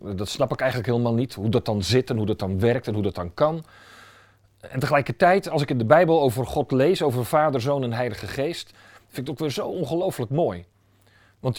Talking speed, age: 235 wpm, 40-59